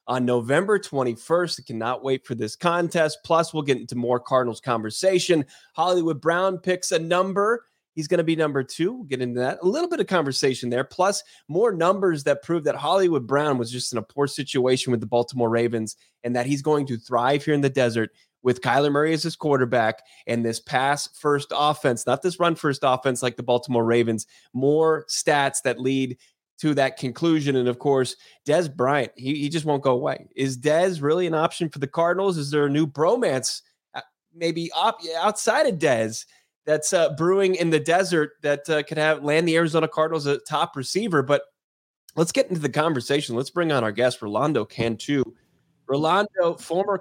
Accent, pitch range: American, 135-175 Hz